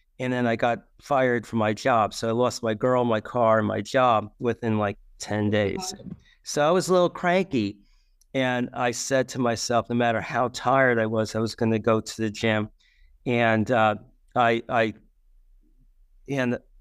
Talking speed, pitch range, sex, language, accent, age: 185 wpm, 105-125 Hz, male, English, American, 40-59